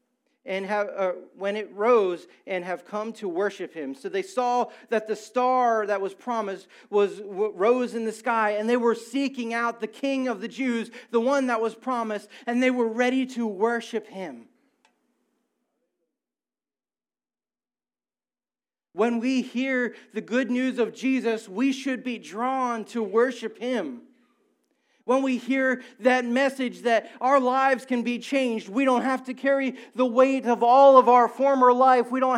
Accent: American